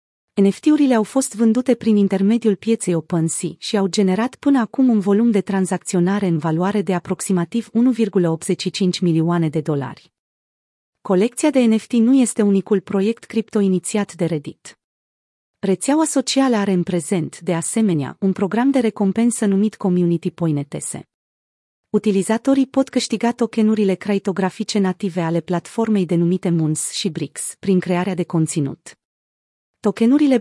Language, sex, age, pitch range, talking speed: Romanian, female, 30-49, 175-225 Hz, 130 wpm